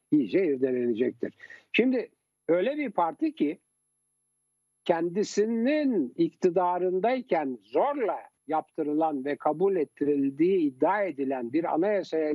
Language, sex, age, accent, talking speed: Turkish, male, 60-79, native, 85 wpm